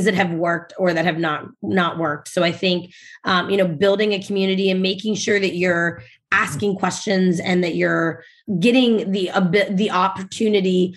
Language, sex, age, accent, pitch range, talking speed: English, female, 20-39, American, 170-205 Hz, 185 wpm